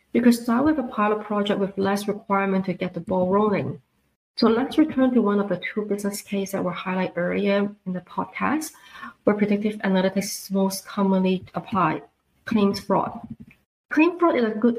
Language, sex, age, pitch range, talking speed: English, female, 30-49, 195-235 Hz, 185 wpm